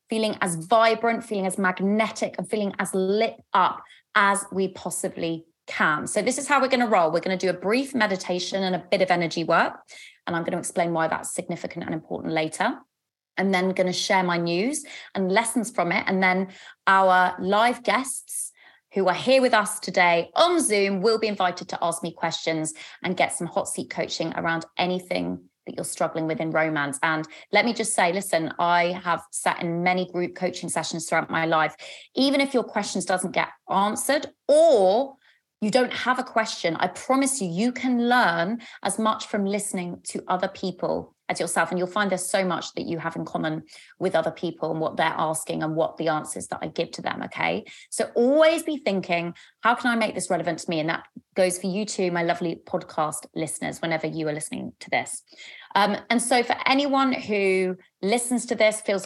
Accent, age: British, 20-39